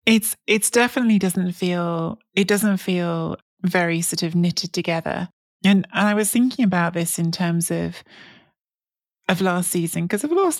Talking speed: 165 wpm